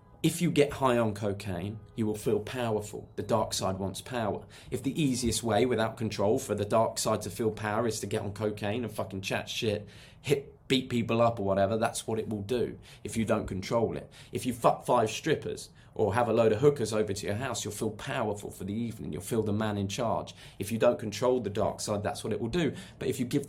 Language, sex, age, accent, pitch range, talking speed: English, male, 20-39, British, 100-120 Hz, 245 wpm